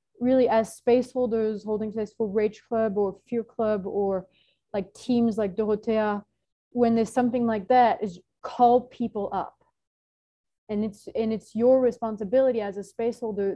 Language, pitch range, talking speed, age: English, 190-235 Hz, 150 wpm, 30-49